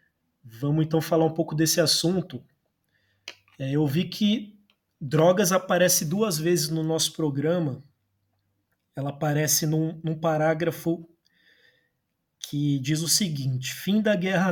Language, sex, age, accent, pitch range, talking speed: Portuguese, male, 20-39, Brazilian, 140-170 Hz, 120 wpm